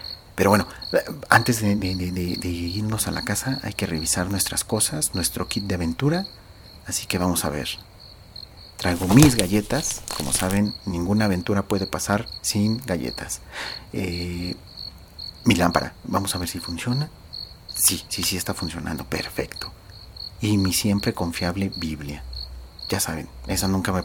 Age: 40-59